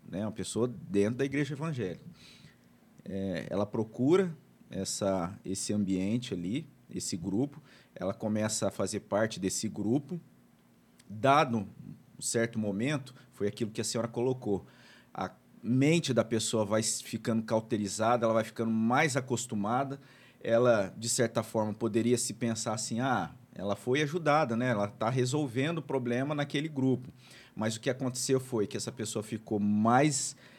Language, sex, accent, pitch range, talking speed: Portuguese, male, Brazilian, 105-130 Hz, 145 wpm